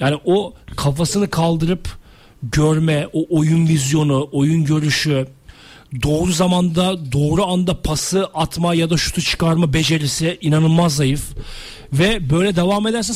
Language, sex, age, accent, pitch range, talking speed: Turkish, male, 40-59, native, 160-215 Hz, 125 wpm